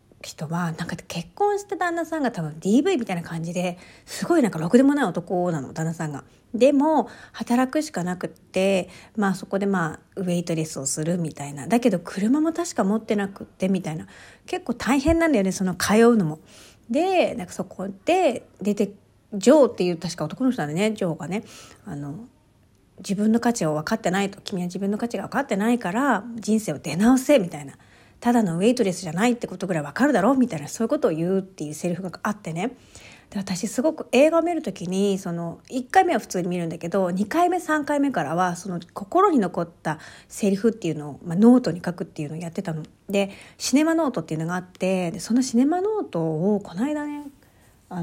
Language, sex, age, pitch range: Japanese, female, 40-59, 170-250 Hz